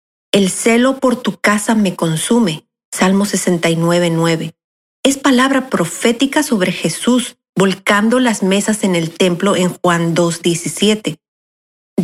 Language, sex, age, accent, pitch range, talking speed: Spanish, female, 40-59, Mexican, 175-230 Hz, 115 wpm